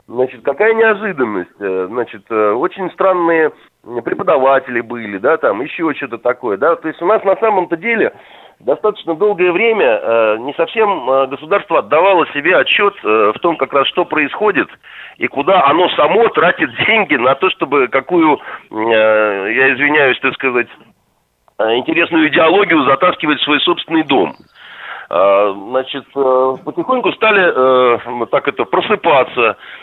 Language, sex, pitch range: Russian, male, 120-175 Hz